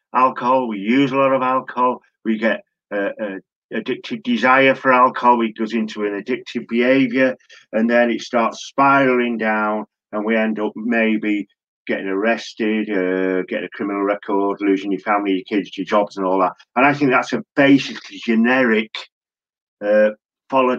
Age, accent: 40-59, British